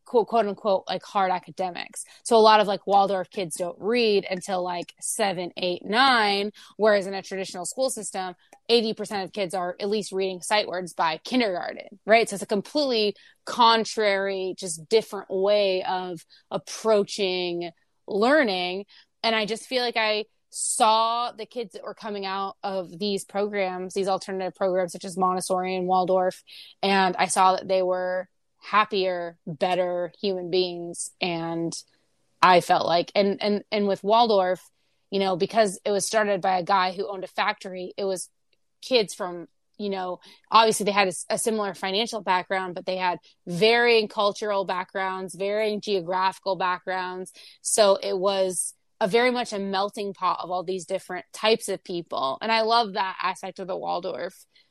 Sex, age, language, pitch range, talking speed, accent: female, 20-39, English, 185-210 Hz, 165 wpm, American